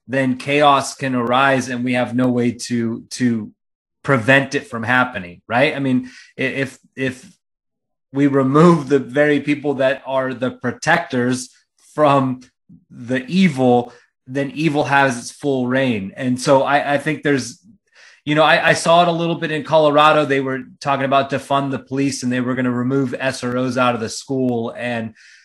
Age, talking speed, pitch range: 20-39, 175 wpm, 125-140 Hz